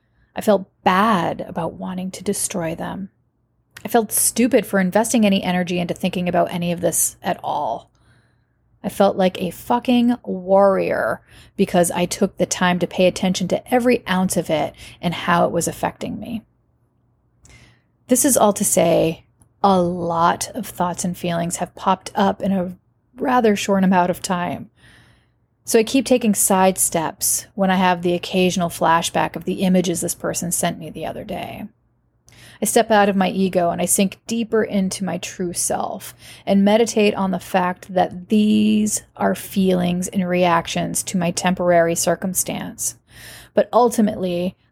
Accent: American